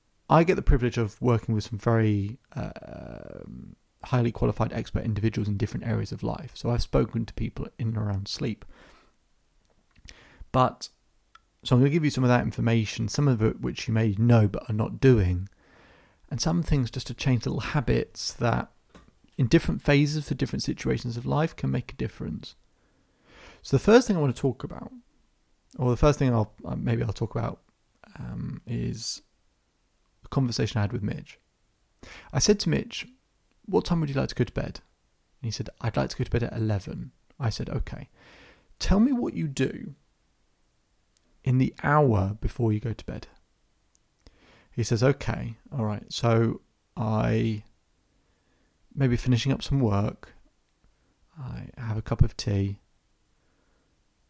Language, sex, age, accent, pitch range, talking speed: English, male, 30-49, British, 105-135 Hz, 170 wpm